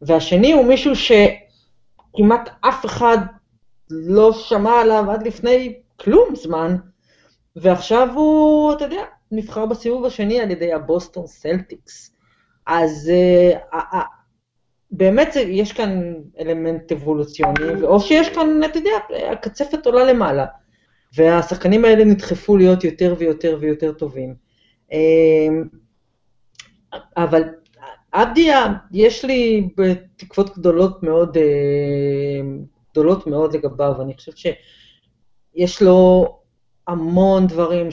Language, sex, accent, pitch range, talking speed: Hebrew, female, native, 155-215 Hz, 105 wpm